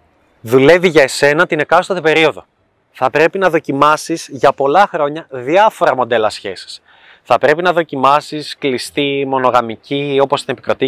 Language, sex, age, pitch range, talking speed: Greek, male, 20-39, 140-185 Hz, 140 wpm